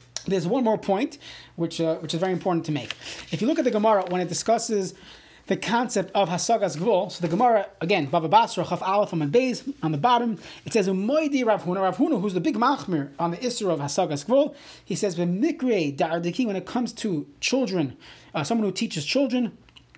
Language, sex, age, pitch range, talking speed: English, male, 30-49, 165-230 Hz, 185 wpm